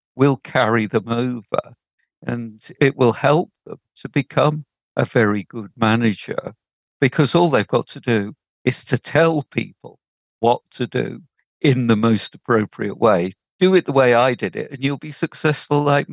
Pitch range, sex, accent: 115-150 Hz, male, British